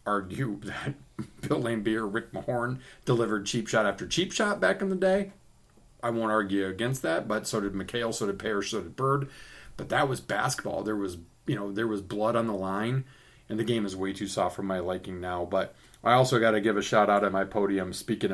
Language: English